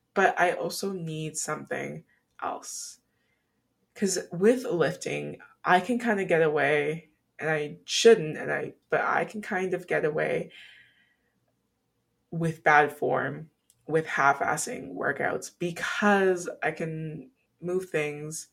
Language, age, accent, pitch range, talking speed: English, 20-39, American, 155-200 Hz, 125 wpm